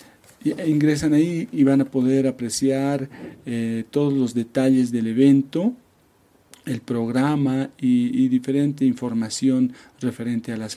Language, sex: Spanish, male